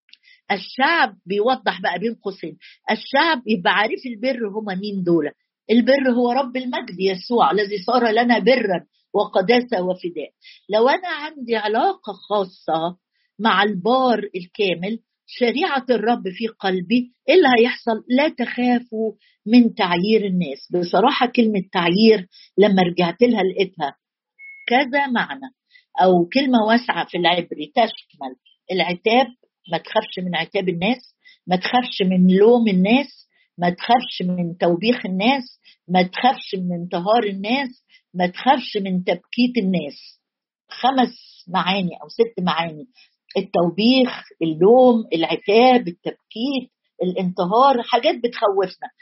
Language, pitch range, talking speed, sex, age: Arabic, 185-250 Hz, 115 wpm, female, 50-69